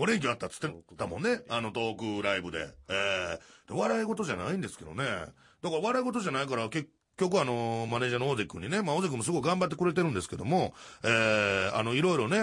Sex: male